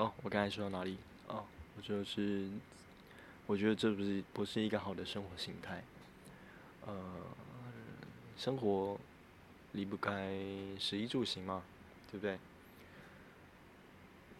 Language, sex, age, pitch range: Chinese, male, 20-39, 95-105 Hz